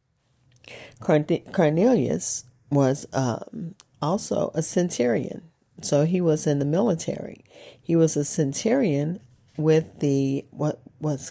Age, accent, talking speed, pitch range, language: 40-59, American, 105 wpm, 130-170 Hz, English